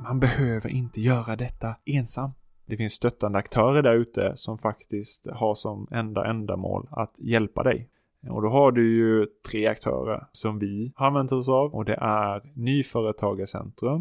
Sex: male